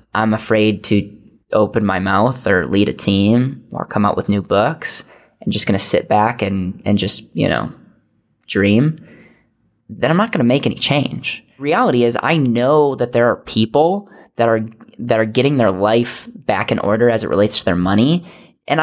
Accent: American